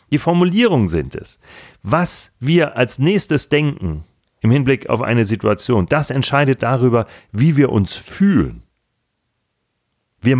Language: German